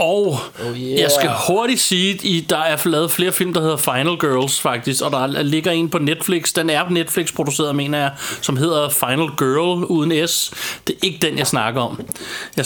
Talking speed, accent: 205 wpm, native